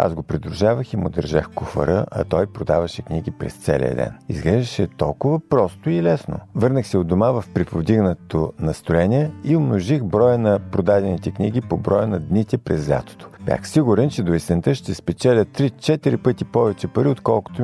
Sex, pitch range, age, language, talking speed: male, 90-120 Hz, 50-69, Bulgarian, 170 wpm